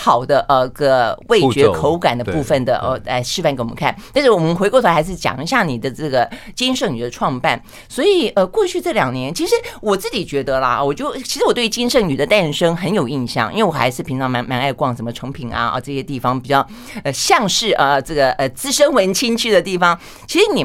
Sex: female